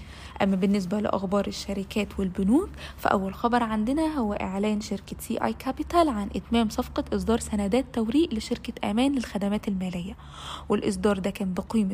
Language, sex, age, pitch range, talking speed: Arabic, female, 20-39, 200-240 Hz, 140 wpm